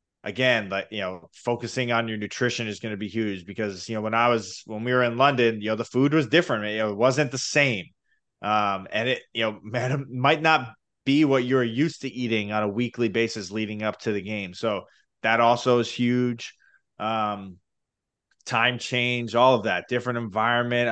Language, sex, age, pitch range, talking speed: English, male, 20-39, 110-130 Hz, 205 wpm